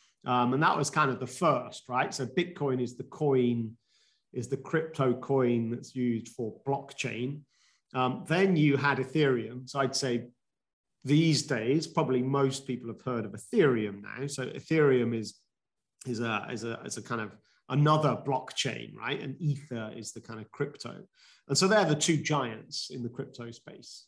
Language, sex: English, male